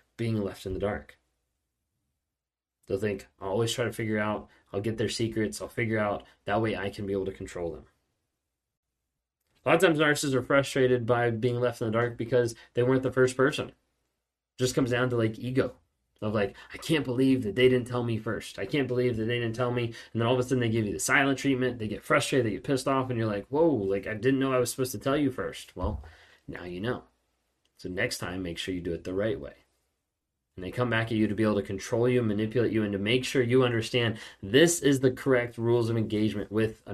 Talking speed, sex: 245 wpm, male